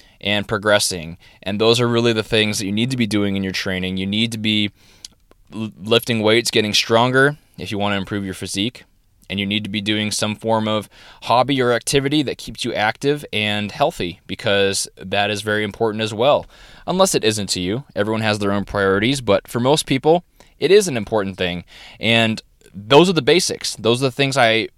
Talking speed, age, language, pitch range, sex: 210 wpm, 20-39, English, 100-125 Hz, male